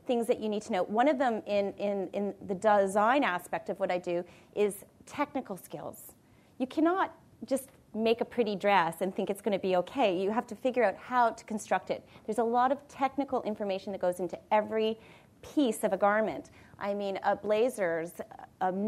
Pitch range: 190-245 Hz